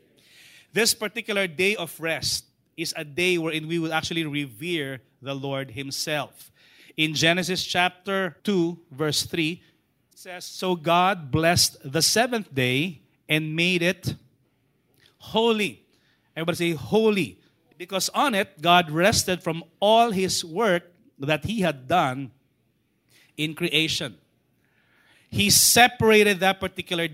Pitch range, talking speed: 150-185 Hz, 125 wpm